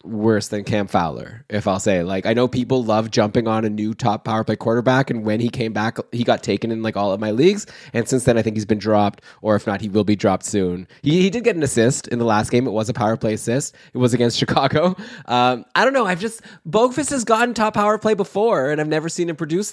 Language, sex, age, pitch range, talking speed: English, male, 20-39, 110-140 Hz, 270 wpm